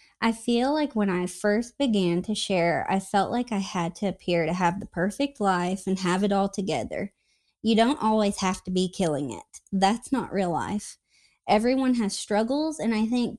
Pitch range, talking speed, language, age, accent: 185-235 Hz, 195 wpm, English, 20-39, American